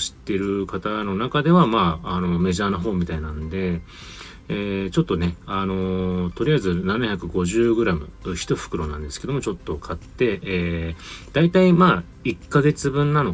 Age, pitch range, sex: 30-49, 85-110 Hz, male